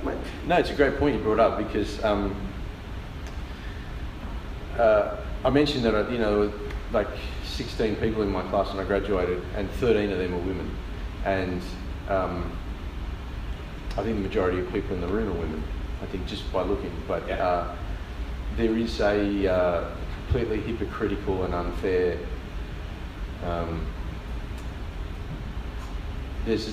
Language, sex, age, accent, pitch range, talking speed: English, male, 30-49, Australian, 80-100 Hz, 140 wpm